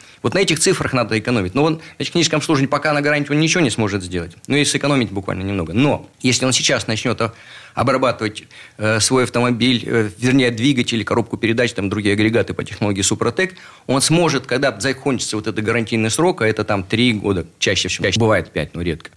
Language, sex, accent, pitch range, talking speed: Russian, male, native, 105-140 Hz, 195 wpm